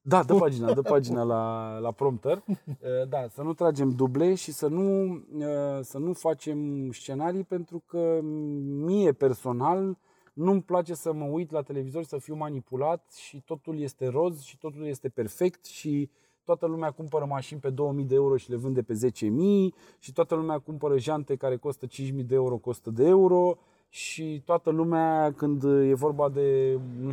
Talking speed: 175 wpm